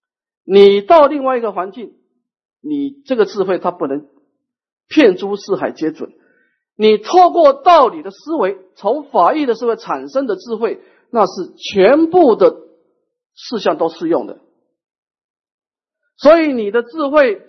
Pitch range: 225-320 Hz